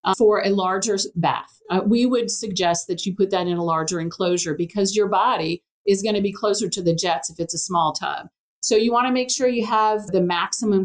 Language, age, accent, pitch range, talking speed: English, 50-69, American, 180-225 Hz, 240 wpm